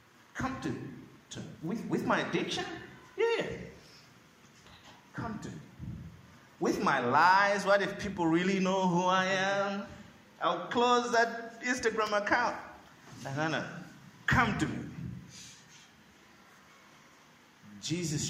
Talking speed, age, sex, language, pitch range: 115 wpm, 30-49, male, English, 125-195 Hz